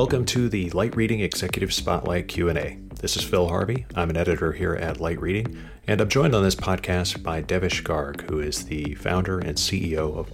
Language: English